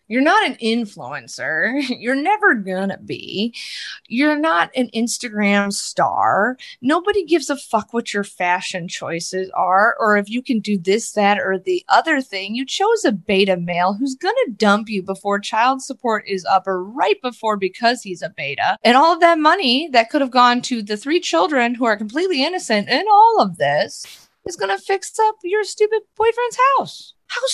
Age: 30-49